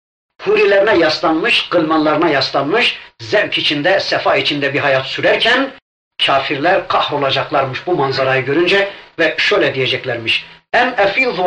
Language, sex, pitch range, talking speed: Turkish, male, 145-195 Hz, 110 wpm